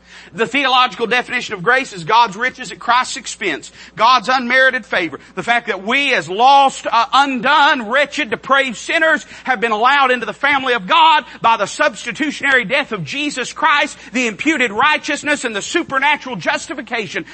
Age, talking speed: 40-59, 165 wpm